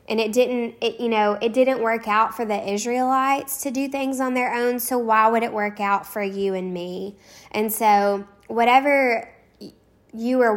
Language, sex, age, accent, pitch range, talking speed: English, female, 10-29, American, 200-230 Hz, 195 wpm